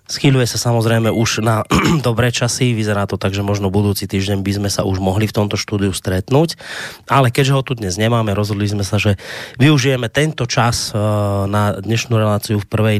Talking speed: 190 wpm